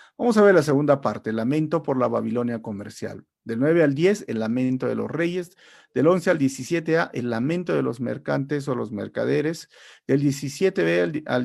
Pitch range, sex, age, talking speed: 120-160 Hz, male, 50-69, 185 wpm